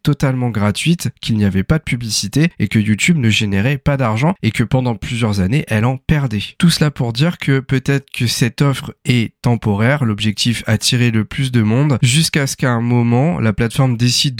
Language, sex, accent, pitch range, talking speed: French, male, French, 105-140 Hz, 200 wpm